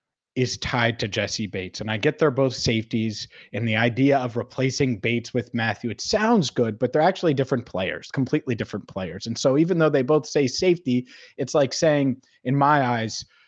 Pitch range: 115-145 Hz